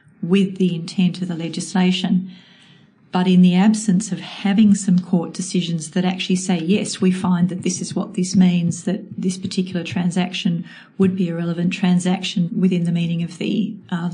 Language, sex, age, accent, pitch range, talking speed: English, female, 40-59, Australian, 180-195 Hz, 180 wpm